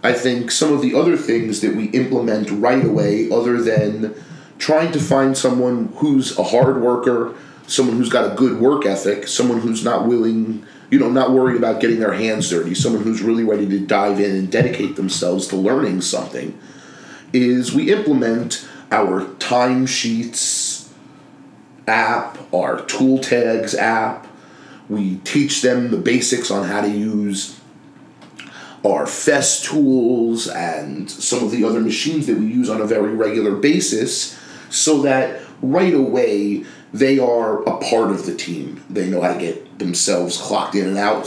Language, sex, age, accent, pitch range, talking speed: English, male, 30-49, American, 110-145 Hz, 165 wpm